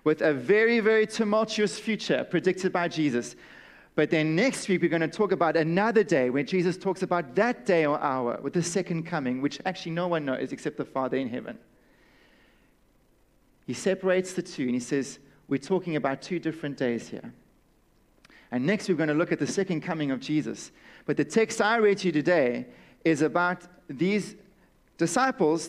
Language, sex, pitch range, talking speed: English, male, 155-190 Hz, 185 wpm